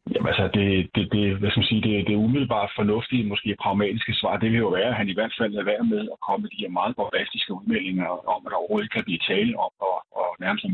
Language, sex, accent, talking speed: Danish, male, native, 245 wpm